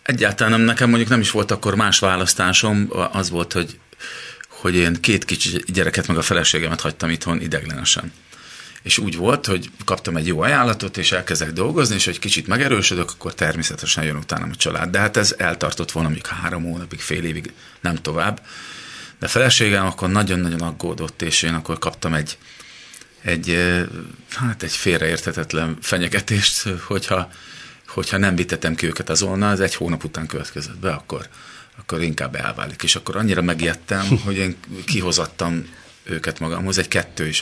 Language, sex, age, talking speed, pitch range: Hungarian, male, 40-59, 160 wpm, 85-100 Hz